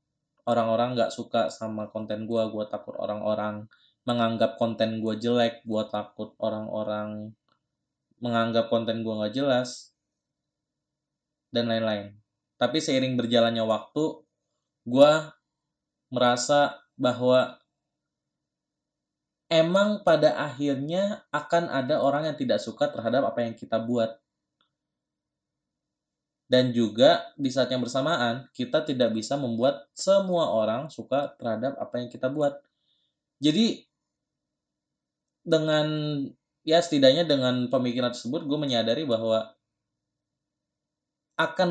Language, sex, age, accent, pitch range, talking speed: Indonesian, male, 20-39, native, 115-145 Hz, 105 wpm